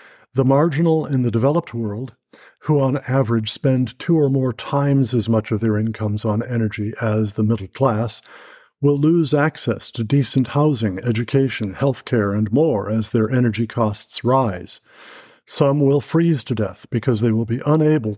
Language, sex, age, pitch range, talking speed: English, male, 50-69, 110-140 Hz, 170 wpm